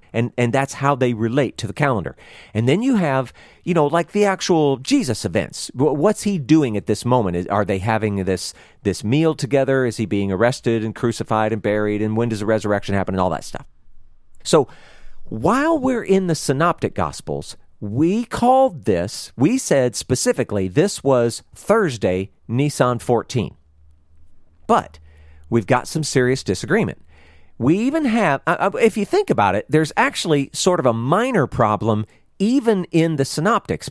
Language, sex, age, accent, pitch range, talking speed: English, male, 40-59, American, 105-170 Hz, 165 wpm